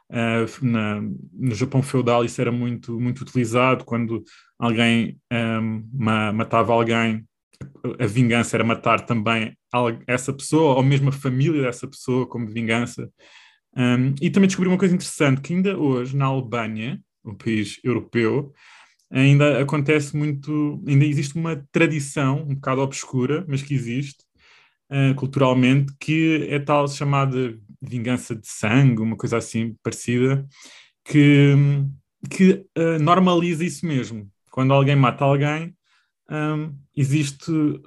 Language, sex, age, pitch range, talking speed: Portuguese, male, 20-39, 120-145 Hz, 130 wpm